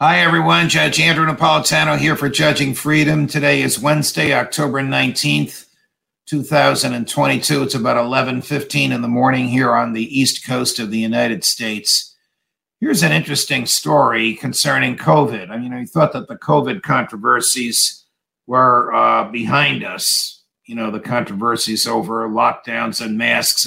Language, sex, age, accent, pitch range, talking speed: English, male, 50-69, American, 115-145 Hz, 140 wpm